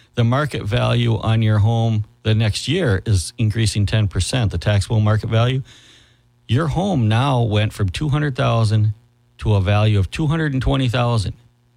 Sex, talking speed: male, 140 wpm